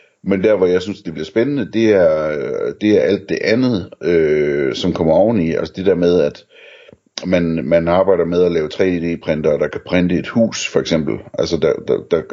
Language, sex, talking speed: Danish, male, 210 wpm